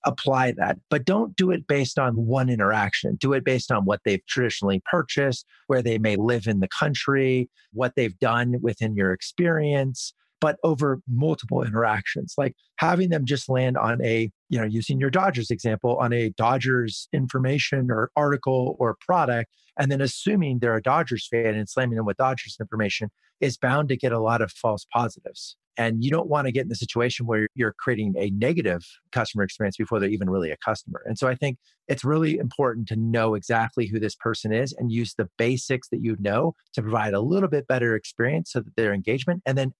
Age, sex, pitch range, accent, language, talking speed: 40-59, male, 110-140 Hz, American, English, 200 wpm